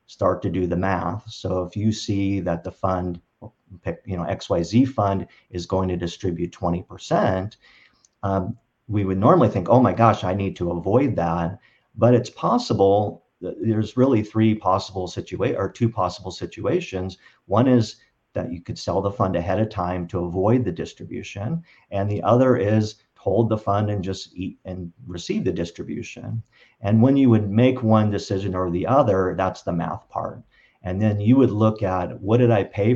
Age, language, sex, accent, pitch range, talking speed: 50-69, English, male, American, 90-110 Hz, 180 wpm